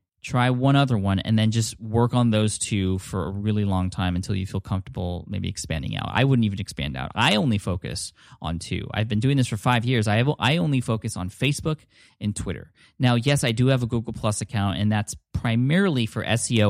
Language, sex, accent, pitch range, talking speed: English, male, American, 95-125 Hz, 225 wpm